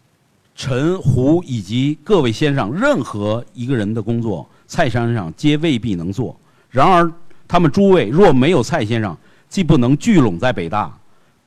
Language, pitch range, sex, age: Chinese, 115-160 Hz, male, 50-69